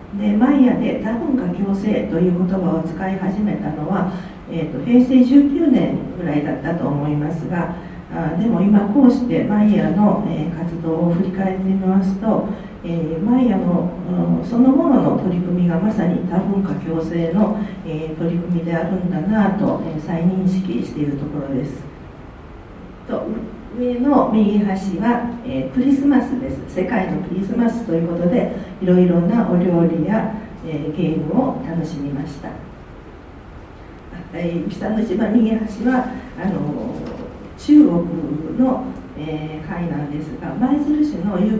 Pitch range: 165-225 Hz